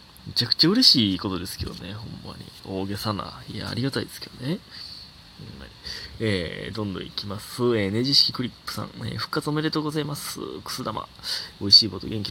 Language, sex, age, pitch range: Japanese, male, 20-39, 100-130 Hz